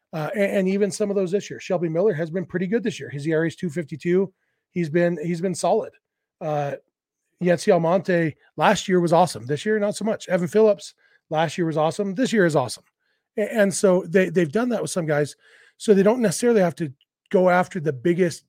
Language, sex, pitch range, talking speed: English, male, 160-205 Hz, 220 wpm